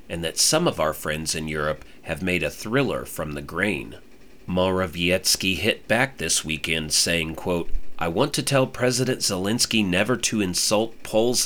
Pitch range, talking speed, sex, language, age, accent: 85-110 Hz, 160 wpm, male, English, 40-59, American